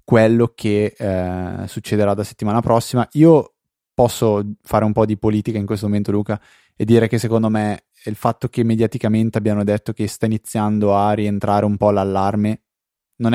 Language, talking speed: Italian, 170 wpm